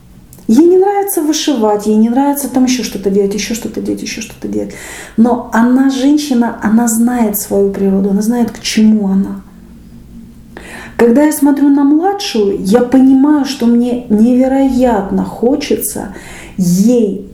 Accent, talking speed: native, 140 wpm